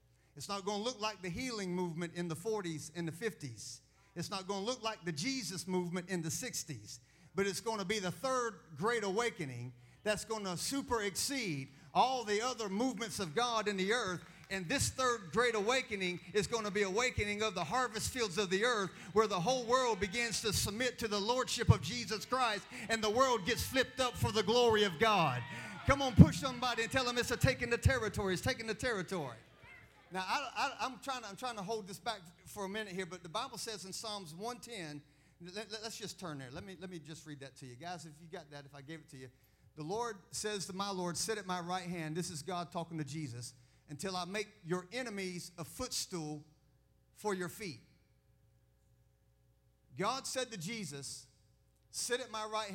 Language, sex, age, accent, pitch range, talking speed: English, male, 40-59, American, 160-225 Hz, 215 wpm